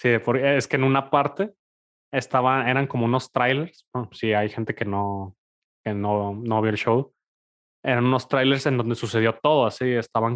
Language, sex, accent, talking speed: Spanish, male, Mexican, 190 wpm